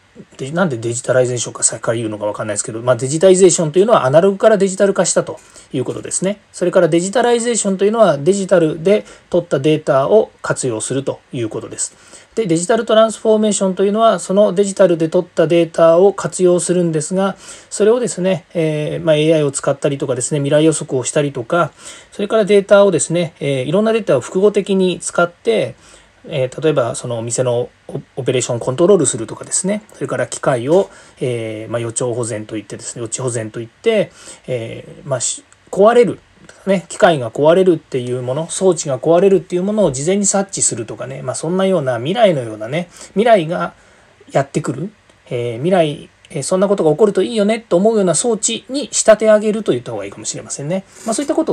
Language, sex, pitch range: Japanese, male, 130-200 Hz